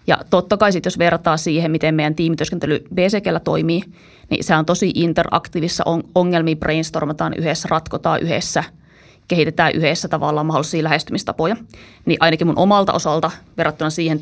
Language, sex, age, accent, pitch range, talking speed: Finnish, female, 30-49, native, 155-180 Hz, 145 wpm